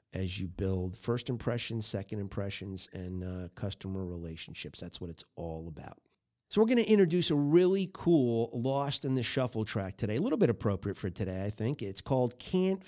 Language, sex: English, male